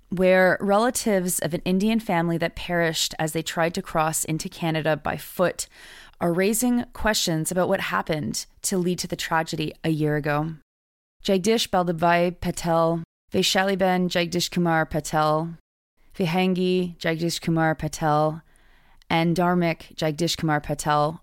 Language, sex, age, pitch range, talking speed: English, female, 20-39, 155-185 Hz, 135 wpm